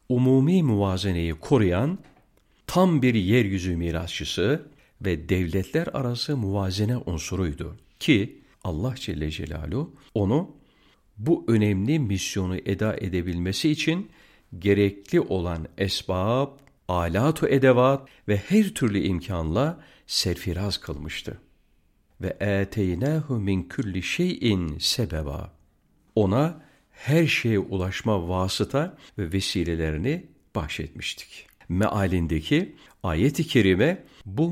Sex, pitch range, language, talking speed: male, 90-135 Hz, Turkish, 90 wpm